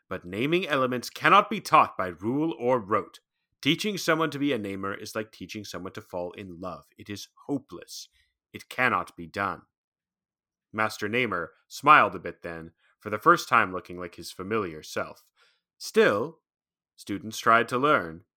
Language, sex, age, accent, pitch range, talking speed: English, male, 30-49, American, 90-125 Hz, 165 wpm